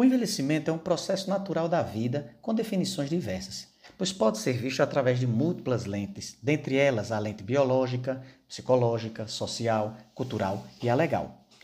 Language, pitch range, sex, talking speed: Portuguese, 110-165 Hz, male, 155 wpm